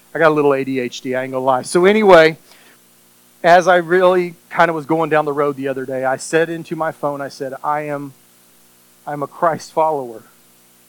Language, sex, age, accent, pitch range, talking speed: English, male, 40-59, American, 125-175 Hz, 210 wpm